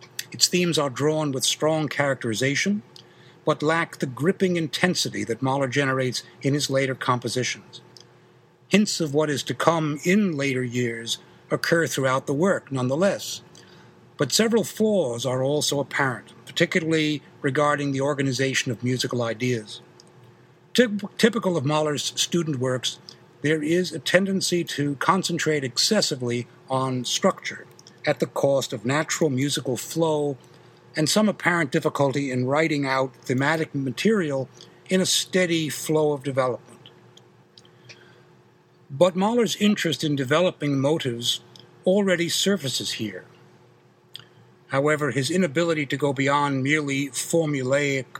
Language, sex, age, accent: English, male, 60-79, American